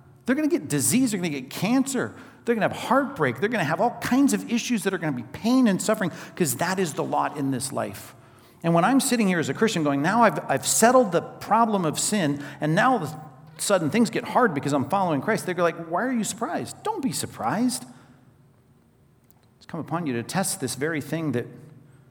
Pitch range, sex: 125-175 Hz, male